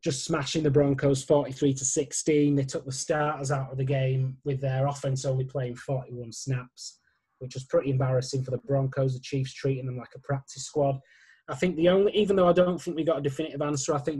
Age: 20-39